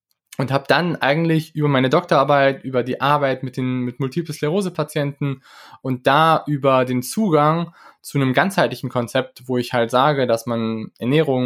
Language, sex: German, male